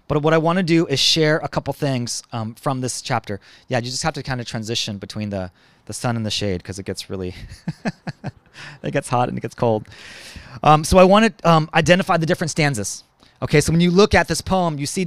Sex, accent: male, American